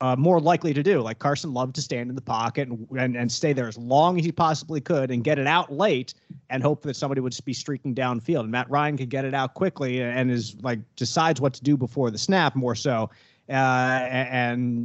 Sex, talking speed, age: male, 240 wpm, 30-49